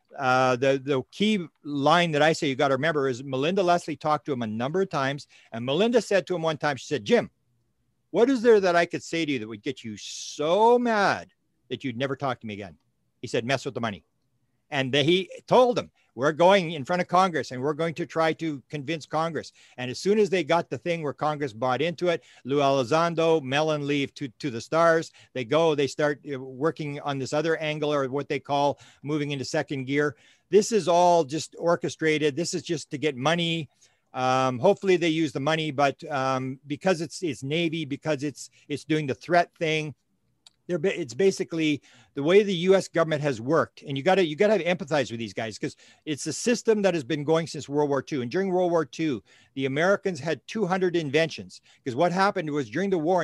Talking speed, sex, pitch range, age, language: 220 wpm, male, 140-175 Hz, 50-69, English